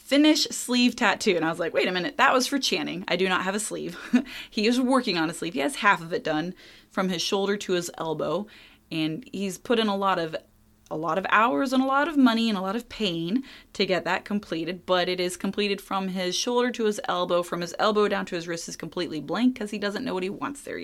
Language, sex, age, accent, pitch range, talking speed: English, female, 20-39, American, 175-245 Hz, 260 wpm